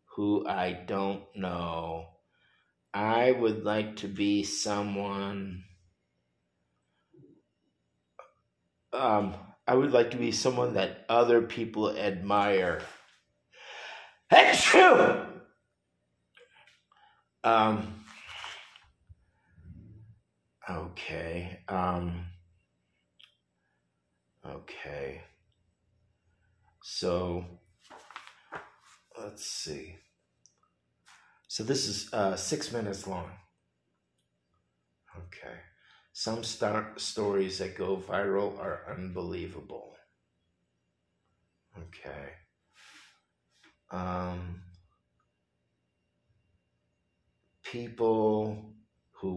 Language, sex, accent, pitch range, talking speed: English, male, American, 80-100 Hz, 60 wpm